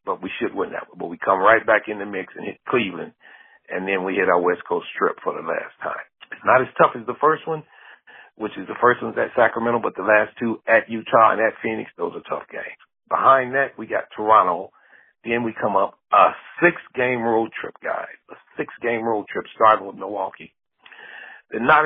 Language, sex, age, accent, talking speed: English, male, 40-59, American, 220 wpm